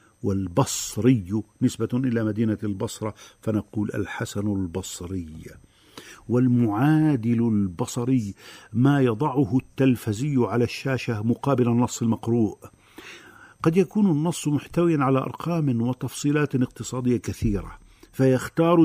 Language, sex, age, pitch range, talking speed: Arabic, male, 50-69, 105-130 Hz, 90 wpm